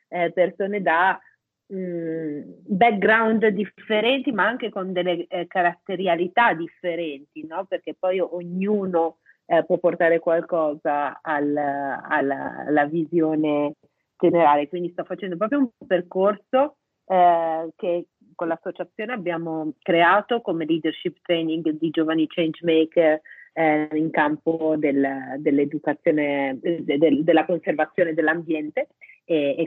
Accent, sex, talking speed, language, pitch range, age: native, female, 115 wpm, Italian, 155-210 Hz, 40-59